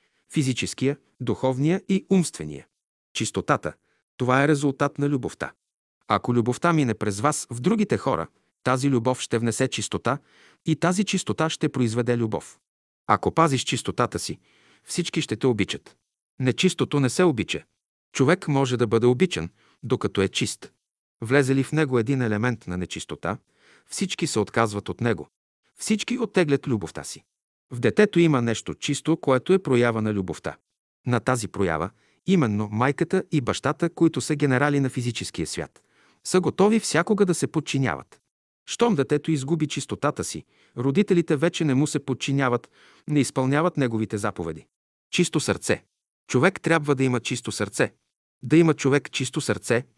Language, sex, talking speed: Bulgarian, male, 150 wpm